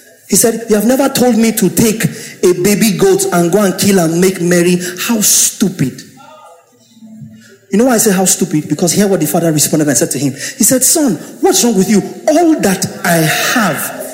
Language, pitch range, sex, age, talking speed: English, 180-230 Hz, male, 30-49, 210 wpm